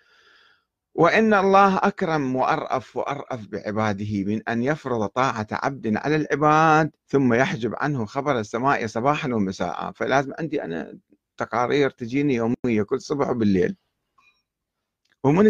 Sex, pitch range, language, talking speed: male, 120-170 Hz, Arabic, 115 wpm